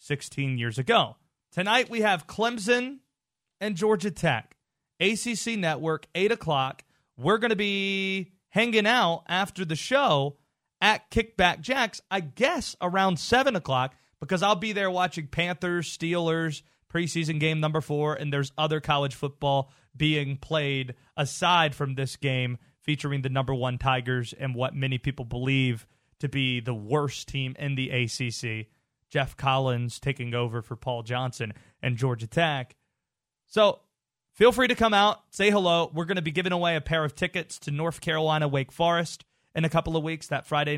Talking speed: 165 wpm